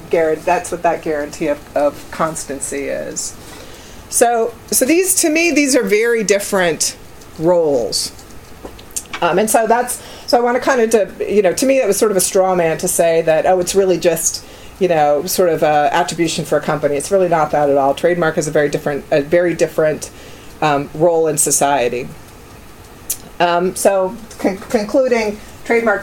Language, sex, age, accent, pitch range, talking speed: English, female, 40-59, American, 155-210 Hz, 180 wpm